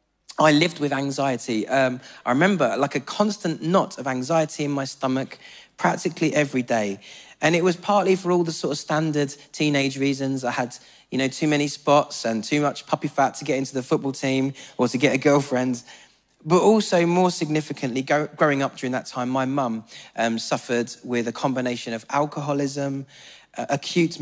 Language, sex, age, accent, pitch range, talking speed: English, male, 20-39, British, 125-155 Hz, 180 wpm